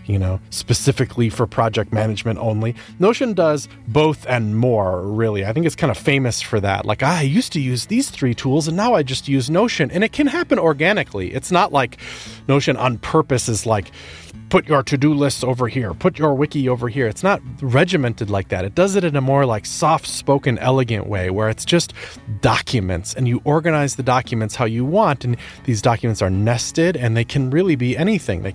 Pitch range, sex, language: 110-145 Hz, male, English